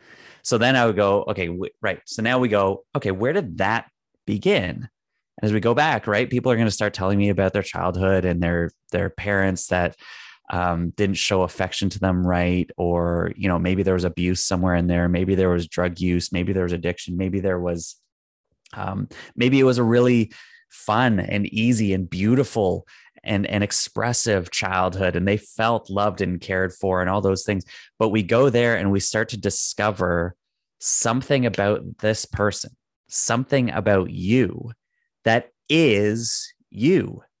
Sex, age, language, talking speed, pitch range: male, 20-39, English, 180 wpm, 95-120 Hz